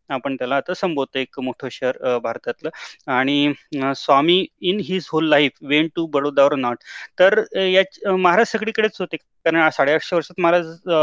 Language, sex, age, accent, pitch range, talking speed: Marathi, male, 30-49, native, 150-190 Hz, 105 wpm